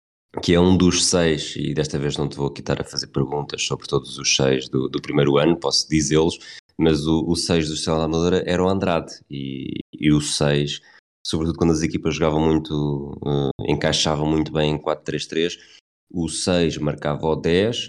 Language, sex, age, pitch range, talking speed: Portuguese, male, 20-39, 70-85 Hz, 195 wpm